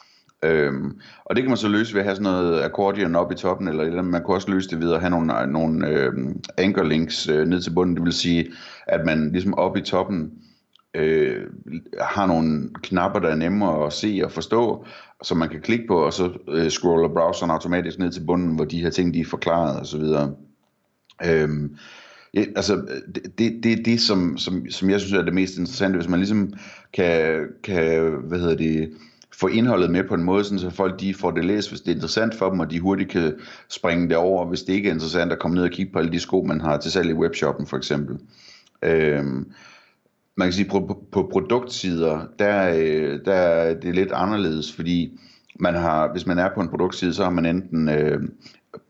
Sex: male